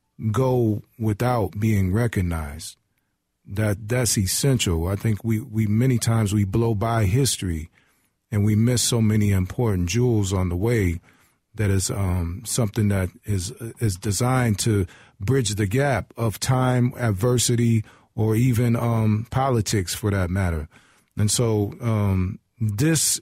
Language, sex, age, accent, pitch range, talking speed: English, male, 40-59, American, 105-125 Hz, 135 wpm